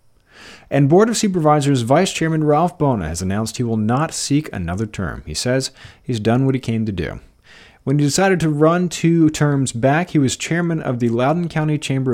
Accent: American